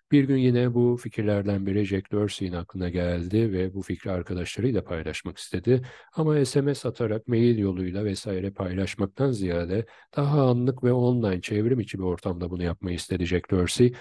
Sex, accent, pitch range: male, native, 90-115 Hz